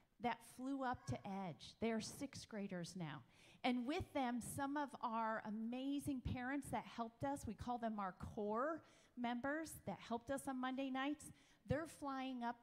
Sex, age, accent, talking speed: female, 40-59, American, 165 wpm